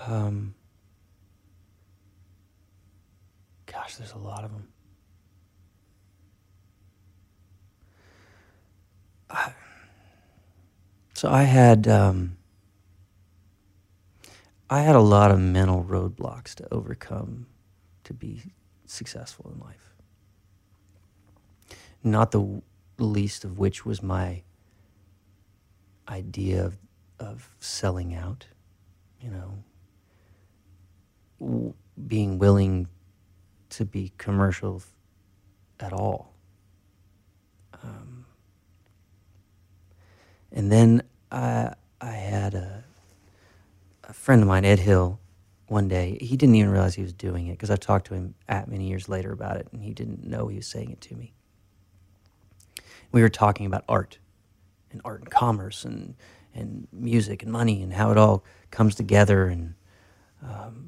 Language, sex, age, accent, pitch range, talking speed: English, male, 40-59, American, 95-100 Hz, 110 wpm